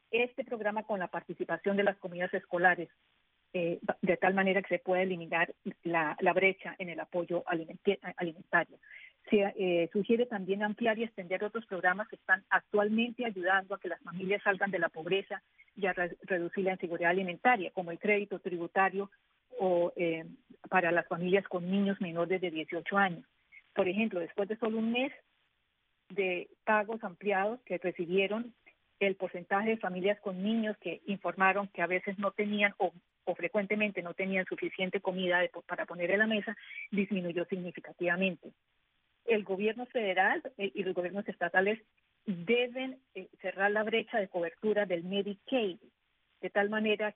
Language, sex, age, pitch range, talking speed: English, female, 40-59, 180-210 Hz, 165 wpm